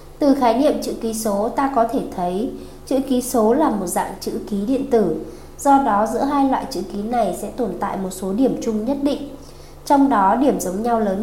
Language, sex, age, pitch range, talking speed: Vietnamese, female, 20-39, 205-270 Hz, 230 wpm